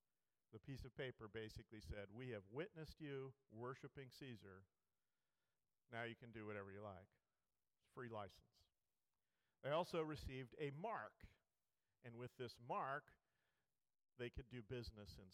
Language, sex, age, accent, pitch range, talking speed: English, male, 50-69, American, 115-160 Hz, 135 wpm